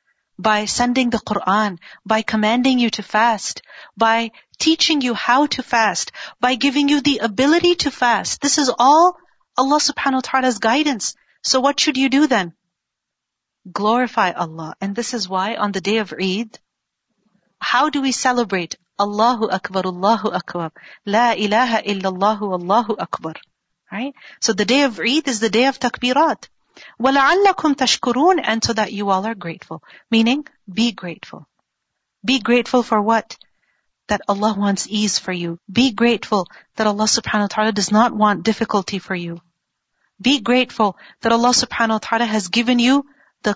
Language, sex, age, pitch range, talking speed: Urdu, female, 40-59, 210-270 Hz, 160 wpm